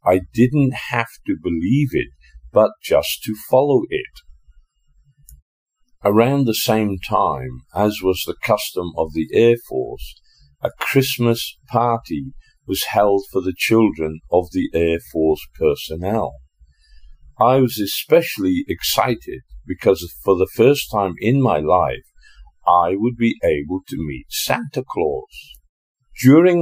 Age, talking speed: 50-69, 130 wpm